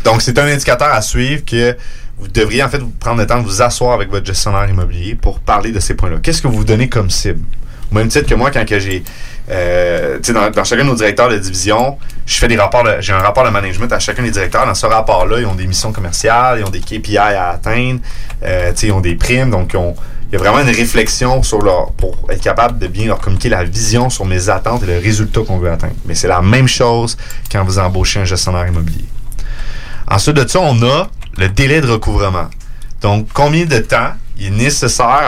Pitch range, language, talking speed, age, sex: 95-120 Hz, French, 235 wpm, 30-49, male